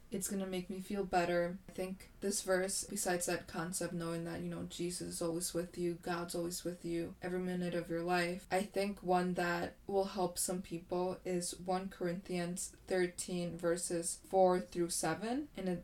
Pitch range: 175-195 Hz